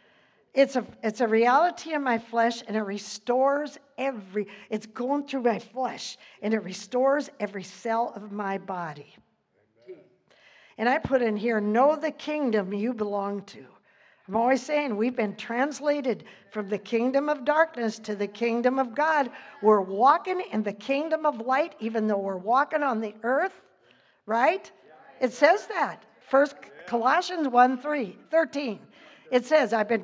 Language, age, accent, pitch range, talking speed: English, 50-69, American, 215-275 Hz, 160 wpm